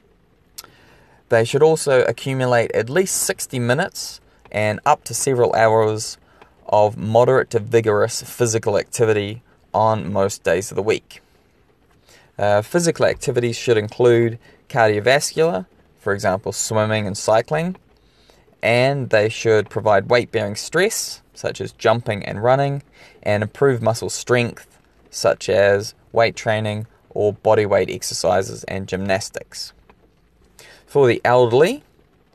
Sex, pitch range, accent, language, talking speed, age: male, 105-125 Hz, Australian, English, 120 wpm, 20-39